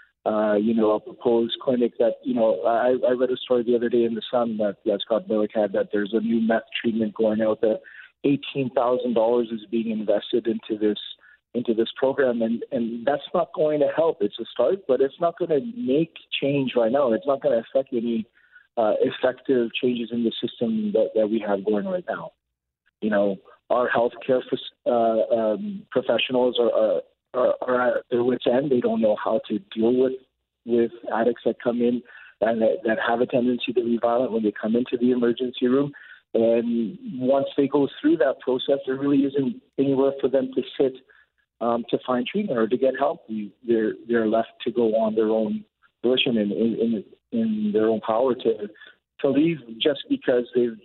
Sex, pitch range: male, 110-140 Hz